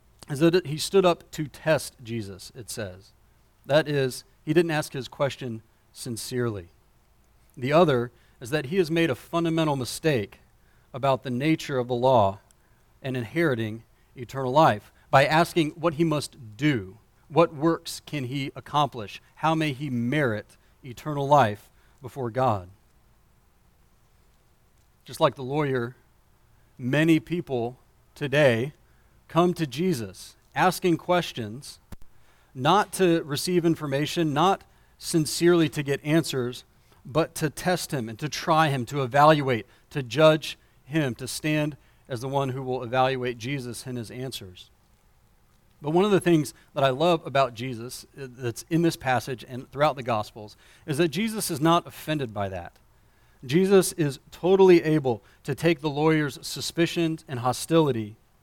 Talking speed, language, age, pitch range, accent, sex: 145 wpm, English, 40-59, 120-160 Hz, American, male